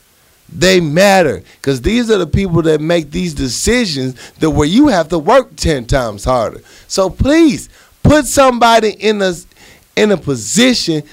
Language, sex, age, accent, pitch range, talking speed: English, male, 30-49, American, 130-210 Hz, 150 wpm